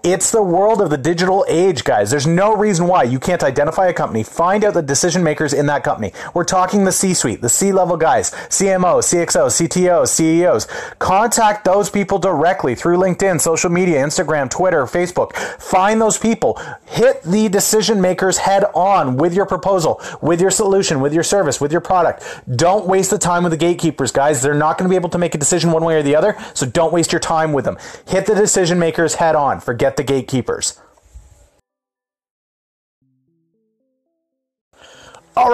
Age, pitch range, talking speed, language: 30-49, 160-205 Hz, 180 wpm, English